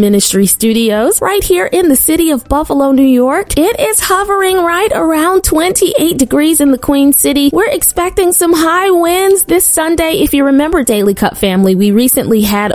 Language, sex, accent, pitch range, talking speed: English, female, American, 210-305 Hz, 180 wpm